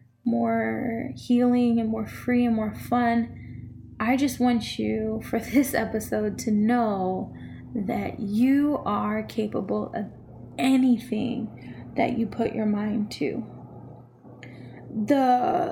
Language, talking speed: English, 115 wpm